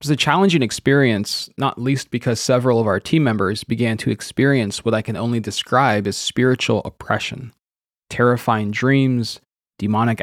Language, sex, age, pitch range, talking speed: English, male, 20-39, 110-140 Hz, 160 wpm